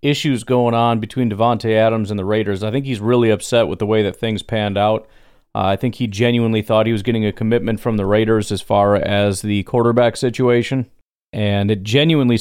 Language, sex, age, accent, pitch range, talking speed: English, male, 40-59, American, 100-120 Hz, 215 wpm